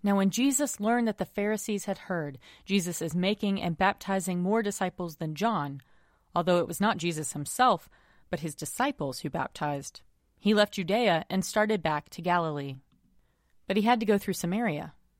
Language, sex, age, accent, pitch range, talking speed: English, female, 30-49, American, 160-215 Hz, 175 wpm